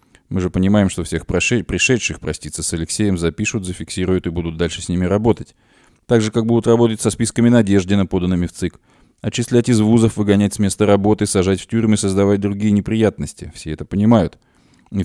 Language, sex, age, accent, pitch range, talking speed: Russian, male, 20-39, native, 90-115 Hz, 180 wpm